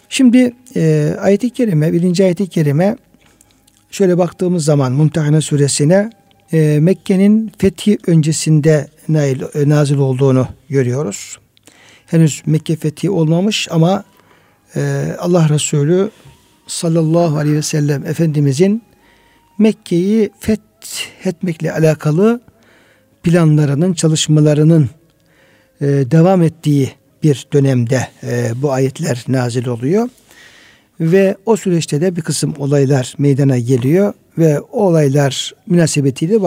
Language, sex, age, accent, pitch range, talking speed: Turkish, male, 60-79, native, 140-190 Hz, 95 wpm